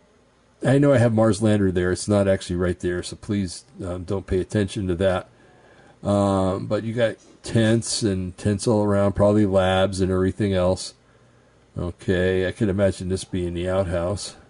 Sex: male